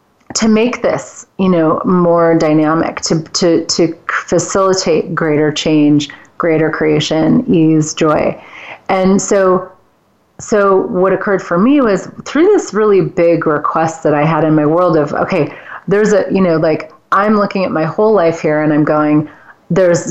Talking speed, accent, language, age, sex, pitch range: 160 wpm, American, English, 30-49, female, 160-210 Hz